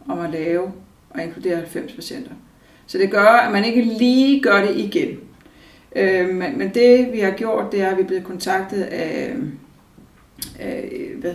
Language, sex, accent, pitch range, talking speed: Danish, female, native, 175-205 Hz, 165 wpm